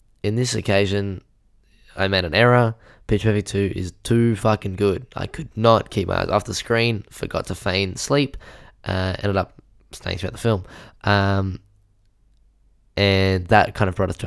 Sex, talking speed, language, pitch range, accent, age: male, 175 wpm, English, 95-115 Hz, Australian, 10-29